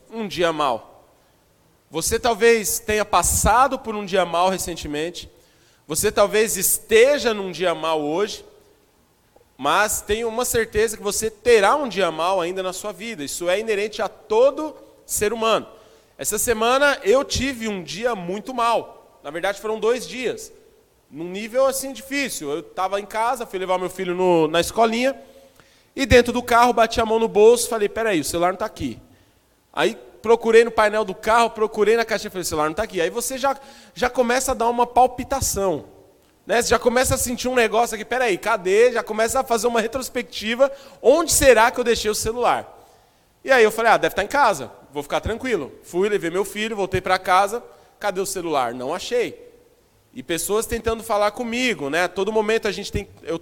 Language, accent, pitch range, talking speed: Portuguese, Brazilian, 190-245 Hz, 190 wpm